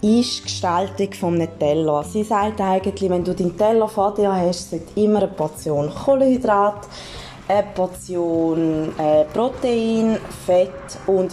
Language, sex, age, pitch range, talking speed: German, female, 20-39, 175-200 Hz, 140 wpm